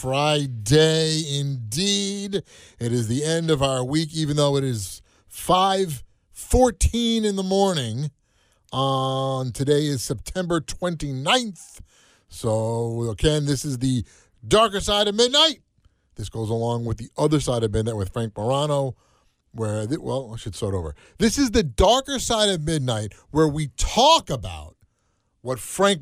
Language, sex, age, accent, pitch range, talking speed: English, male, 30-49, American, 115-185 Hz, 145 wpm